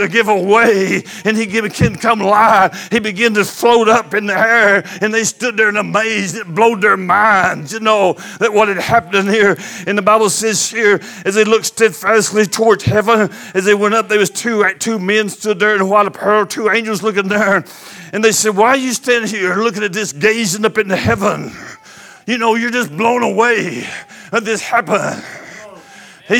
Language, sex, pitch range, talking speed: English, male, 205-235 Hz, 205 wpm